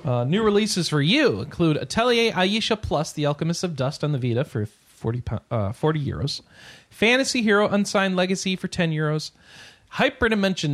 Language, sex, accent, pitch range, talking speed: English, male, American, 125-180 Hz, 160 wpm